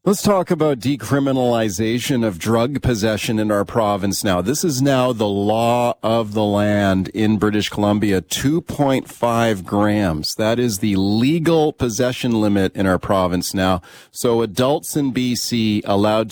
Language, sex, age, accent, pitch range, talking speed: English, male, 40-59, American, 105-135 Hz, 145 wpm